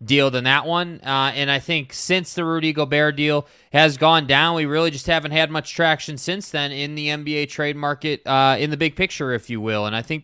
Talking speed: 240 wpm